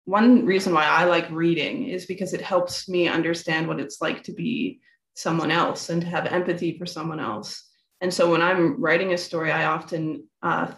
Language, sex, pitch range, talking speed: English, female, 165-185 Hz, 200 wpm